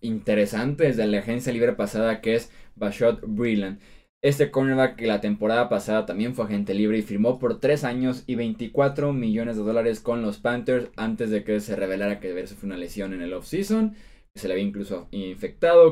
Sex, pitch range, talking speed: male, 105-135 Hz, 195 wpm